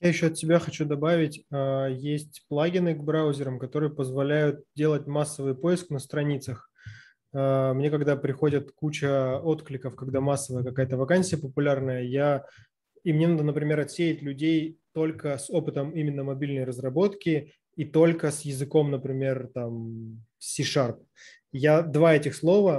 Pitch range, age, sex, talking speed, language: 140-160 Hz, 20-39, male, 135 wpm, Russian